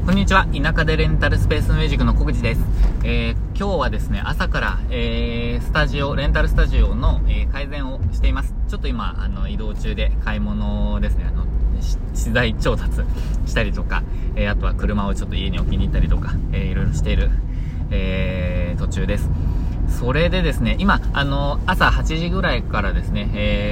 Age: 20-39